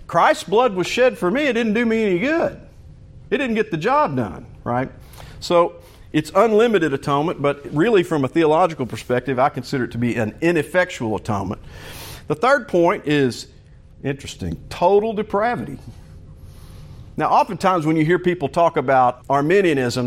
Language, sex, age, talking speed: English, male, 50-69, 160 wpm